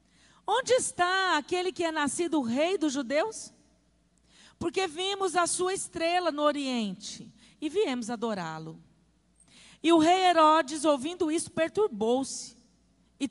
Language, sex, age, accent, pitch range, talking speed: Portuguese, female, 40-59, Brazilian, 240-325 Hz, 125 wpm